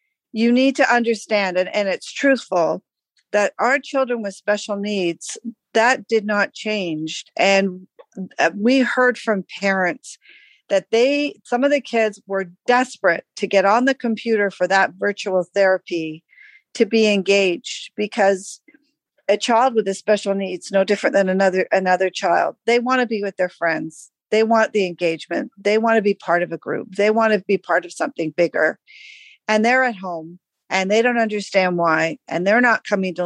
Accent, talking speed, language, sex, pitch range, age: American, 175 wpm, English, female, 185-235 Hz, 50-69